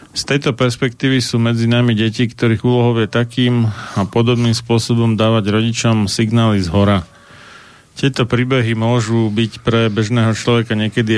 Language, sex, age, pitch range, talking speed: Slovak, male, 40-59, 105-120 Hz, 140 wpm